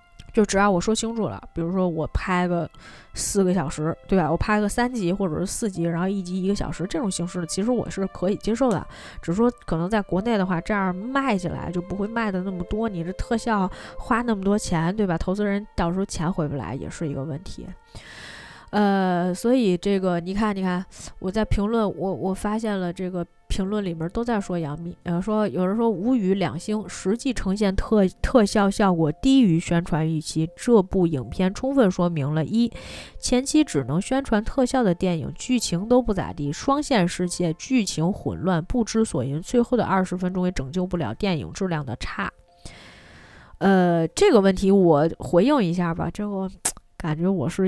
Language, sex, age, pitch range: Chinese, female, 20-39, 170-210 Hz